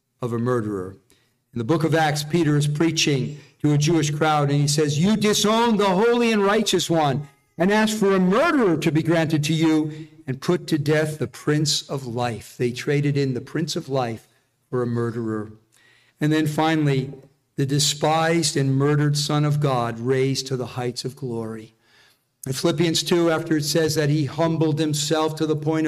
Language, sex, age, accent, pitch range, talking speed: English, male, 50-69, American, 135-170 Hz, 190 wpm